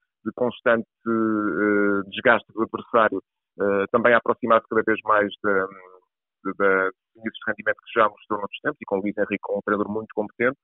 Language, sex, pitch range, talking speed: Portuguese, male, 105-120 Hz, 175 wpm